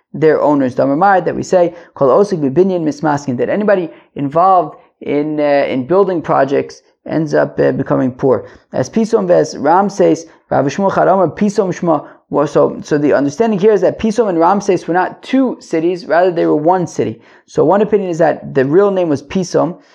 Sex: male